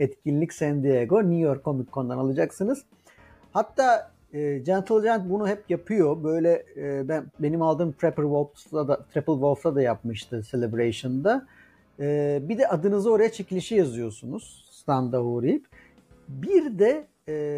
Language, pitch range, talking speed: Turkish, 140-195 Hz, 135 wpm